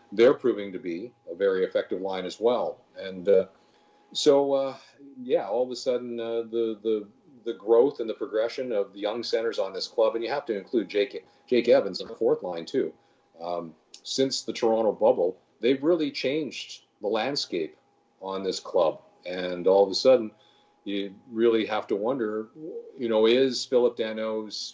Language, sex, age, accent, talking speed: English, male, 40-59, American, 180 wpm